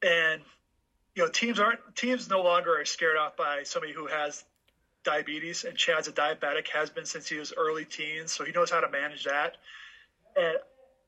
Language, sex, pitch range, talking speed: English, male, 170-235 Hz, 190 wpm